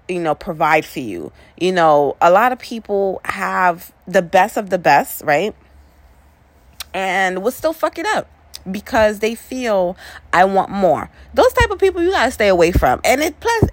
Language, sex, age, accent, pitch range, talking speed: English, female, 20-39, American, 160-230 Hz, 185 wpm